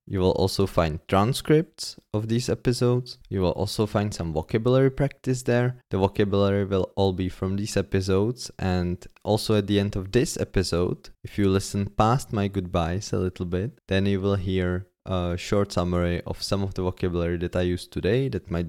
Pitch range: 90-105 Hz